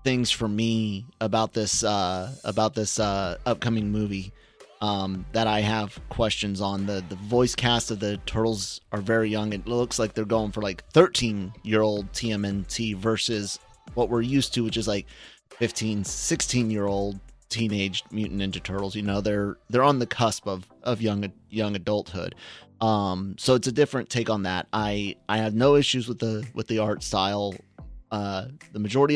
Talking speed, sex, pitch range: 180 wpm, male, 100-115 Hz